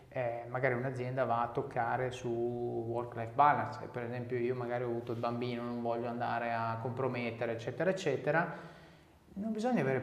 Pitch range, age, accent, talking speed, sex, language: 125-170 Hz, 30-49, native, 170 wpm, male, Italian